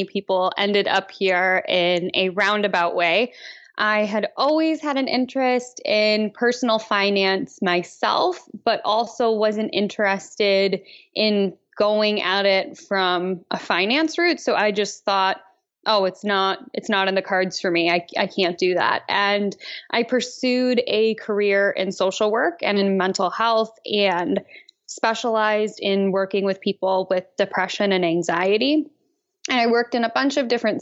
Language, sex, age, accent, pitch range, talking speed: English, female, 10-29, American, 190-225 Hz, 155 wpm